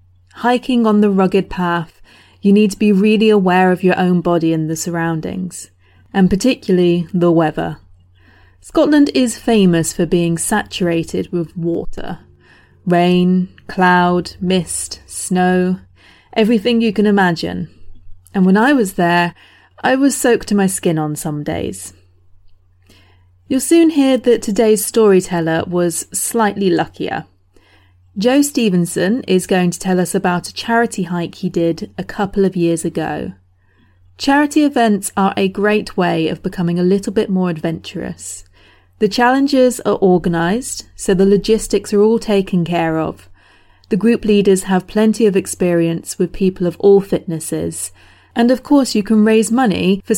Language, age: English, 30-49